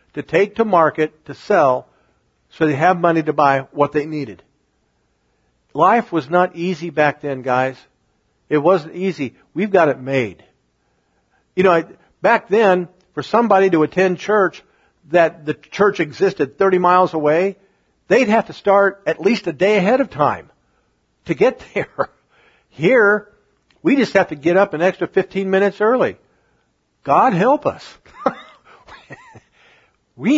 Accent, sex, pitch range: American, male, 150-200 Hz